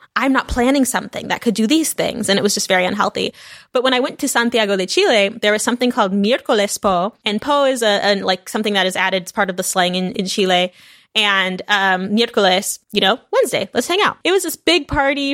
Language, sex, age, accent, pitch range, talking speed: English, female, 20-39, American, 200-255 Hz, 240 wpm